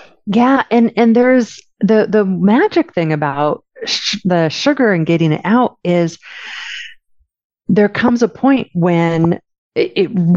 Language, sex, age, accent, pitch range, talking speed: English, female, 40-59, American, 165-235 Hz, 140 wpm